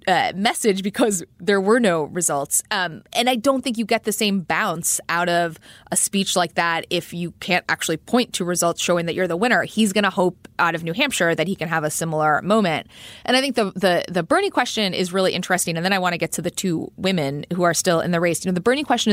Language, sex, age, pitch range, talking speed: English, female, 20-39, 165-205 Hz, 255 wpm